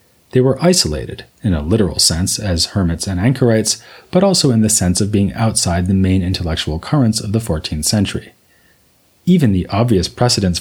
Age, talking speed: 30-49, 175 wpm